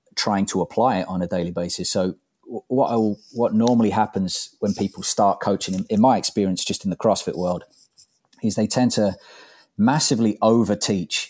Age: 30-49